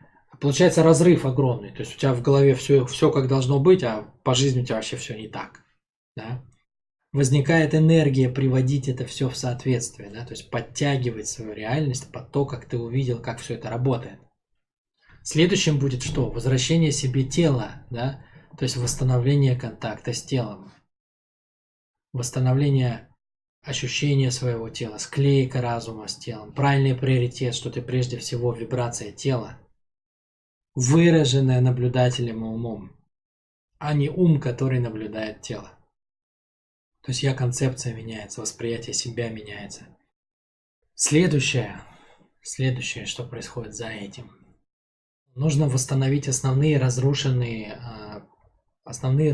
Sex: male